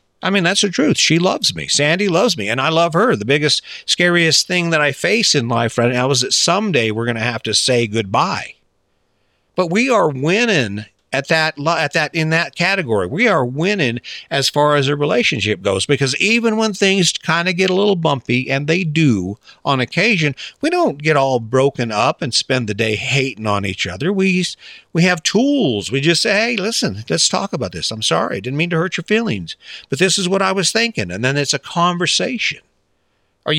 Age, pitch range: 50-69, 120-180 Hz